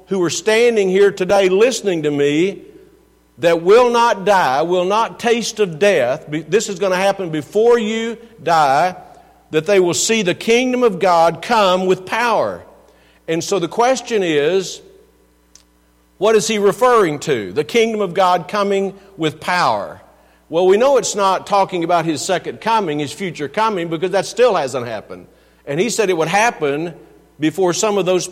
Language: English